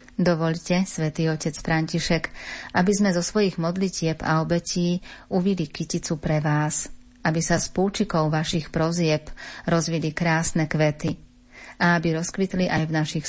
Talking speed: 135 wpm